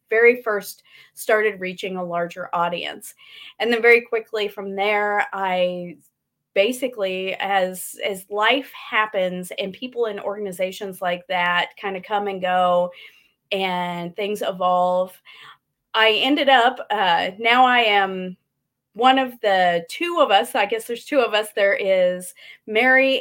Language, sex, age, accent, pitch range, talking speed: English, female, 30-49, American, 195-245 Hz, 140 wpm